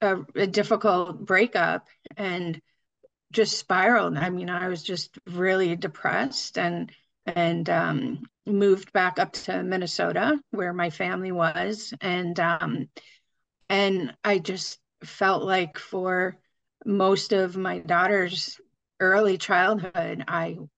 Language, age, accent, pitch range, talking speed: English, 30-49, American, 175-205 Hz, 120 wpm